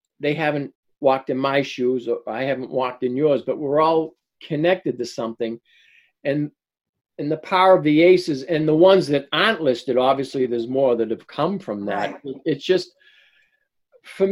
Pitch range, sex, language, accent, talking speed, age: 125-175 Hz, male, English, American, 175 wpm, 50-69